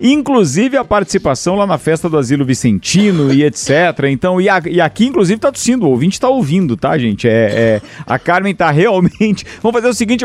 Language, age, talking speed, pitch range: Portuguese, 50-69, 195 wpm, 135-185 Hz